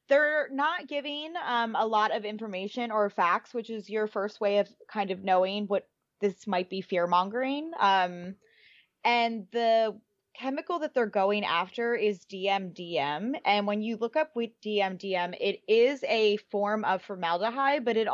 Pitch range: 195-245 Hz